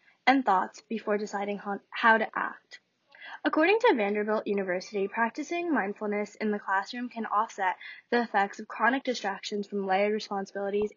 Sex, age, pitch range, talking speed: female, 10-29, 205-260 Hz, 140 wpm